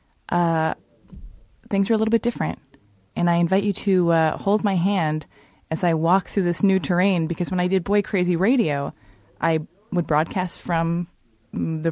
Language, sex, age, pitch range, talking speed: English, female, 20-39, 160-220 Hz, 175 wpm